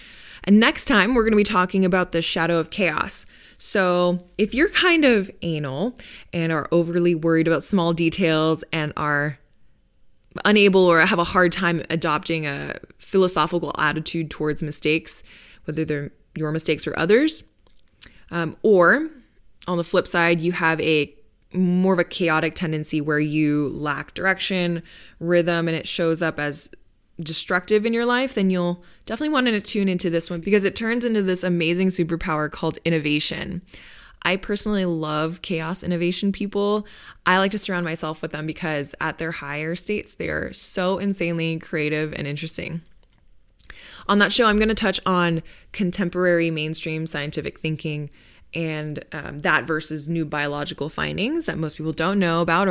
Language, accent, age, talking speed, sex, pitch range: English, American, 20-39, 160 wpm, female, 155-185 Hz